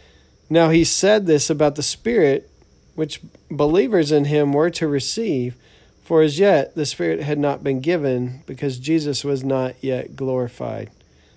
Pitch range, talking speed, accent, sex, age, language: 125-160 Hz, 155 wpm, American, male, 40-59, English